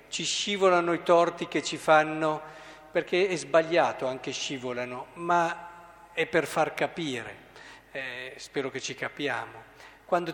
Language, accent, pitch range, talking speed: Italian, native, 145-210 Hz, 135 wpm